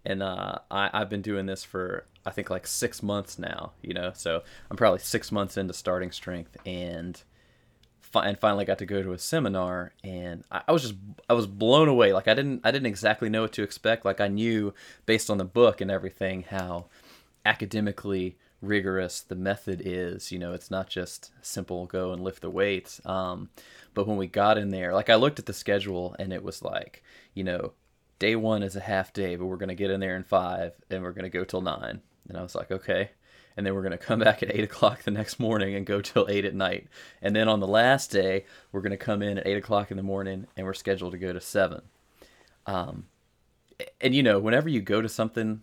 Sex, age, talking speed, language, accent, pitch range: male, 20-39, 230 wpm, English, American, 95-110 Hz